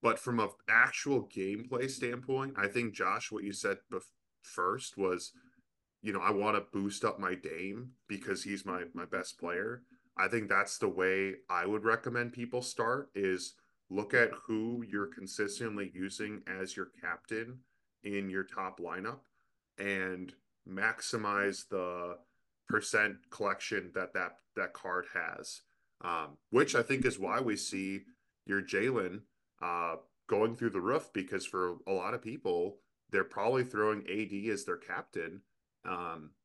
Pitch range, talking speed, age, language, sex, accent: 95-115 Hz, 155 wpm, 10-29, English, male, American